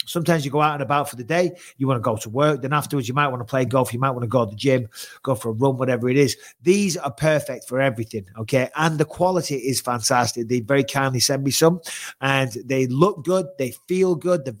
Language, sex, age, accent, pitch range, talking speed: English, male, 30-49, British, 135-170 Hz, 260 wpm